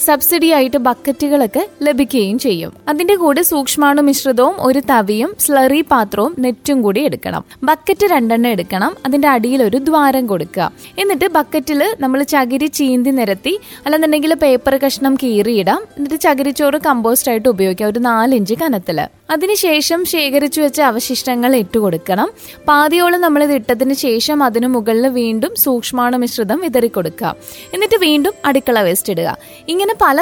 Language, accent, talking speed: Malayalam, native, 130 wpm